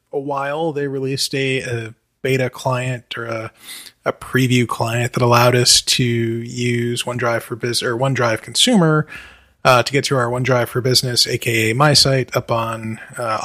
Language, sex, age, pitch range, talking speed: English, male, 20-39, 120-140 Hz, 165 wpm